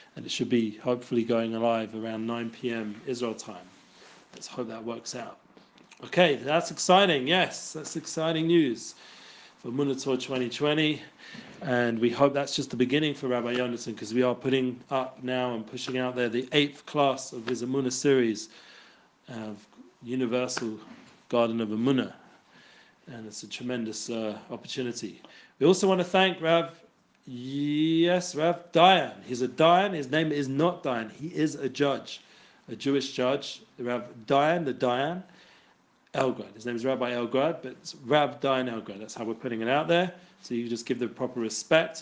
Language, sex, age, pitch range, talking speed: English, male, 40-59, 120-160 Hz, 170 wpm